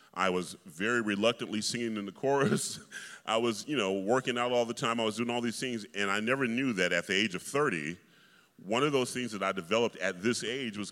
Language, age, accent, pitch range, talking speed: English, 30-49, American, 95-125 Hz, 240 wpm